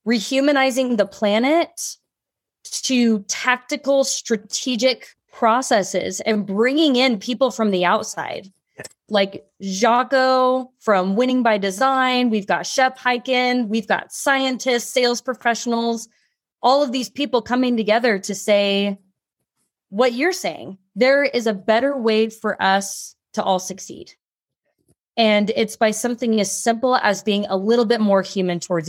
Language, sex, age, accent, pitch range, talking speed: English, female, 20-39, American, 195-250 Hz, 135 wpm